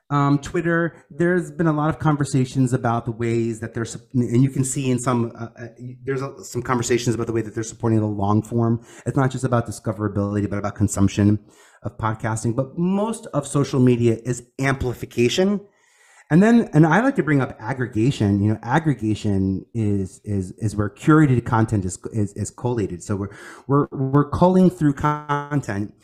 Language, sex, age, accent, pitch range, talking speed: English, male, 30-49, American, 110-145 Hz, 180 wpm